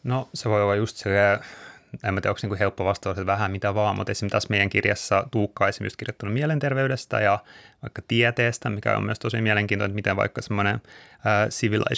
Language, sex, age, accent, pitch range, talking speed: Finnish, male, 30-49, native, 100-110 Hz, 190 wpm